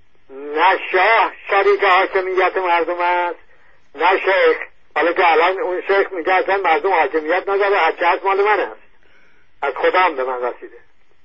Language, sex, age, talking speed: English, male, 50-69, 150 wpm